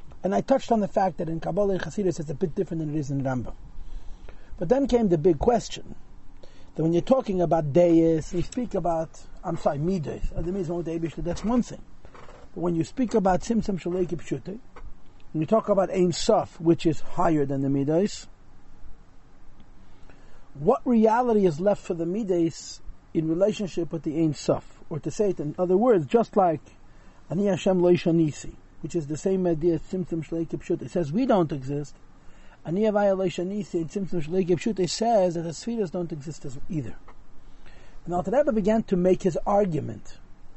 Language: English